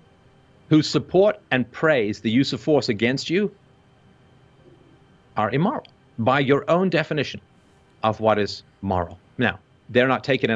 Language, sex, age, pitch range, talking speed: English, male, 50-69, 110-155 Hz, 140 wpm